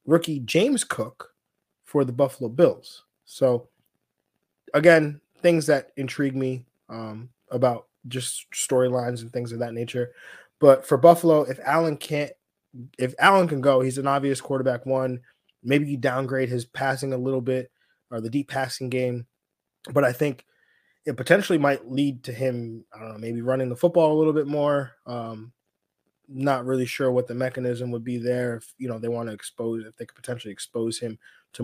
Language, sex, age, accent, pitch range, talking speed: English, male, 20-39, American, 120-140 Hz, 180 wpm